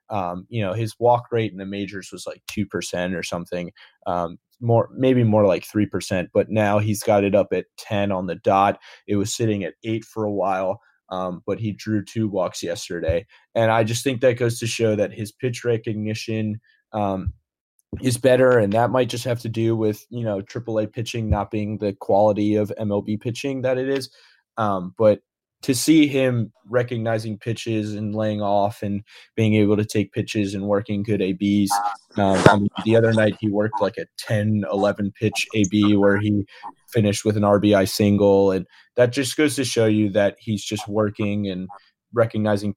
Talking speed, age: 195 wpm, 20-39